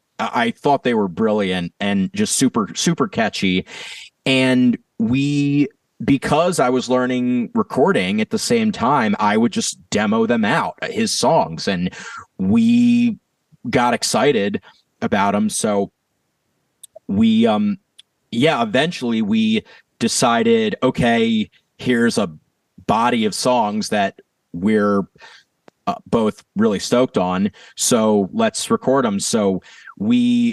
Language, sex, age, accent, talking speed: English, male, 30-49, American, 120 wpm